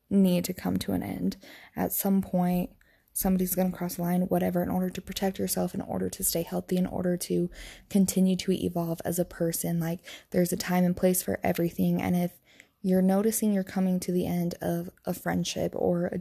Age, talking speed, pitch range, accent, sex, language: 20-39, 210 wpm, 170-190 Hz, American, female, English